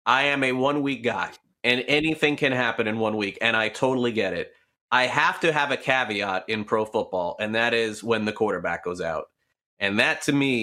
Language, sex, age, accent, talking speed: English, male, 30-49, American, 215 wpm